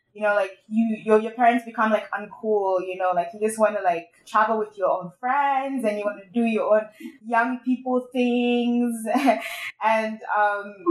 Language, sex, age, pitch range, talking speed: English, female, 20-39, 195-235 Hz, 195 wpm